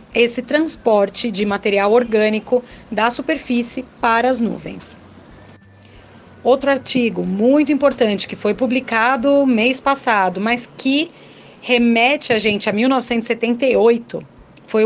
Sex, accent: female, Brazilian